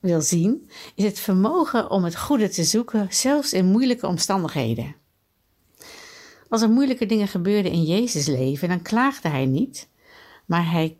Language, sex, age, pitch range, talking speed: Dutch, female, 60-79, 160-225 Hz, 155 wpm